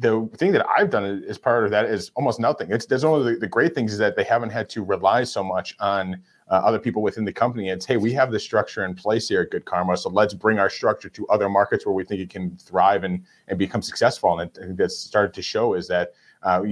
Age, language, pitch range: 30-49, English, 95-110 Hz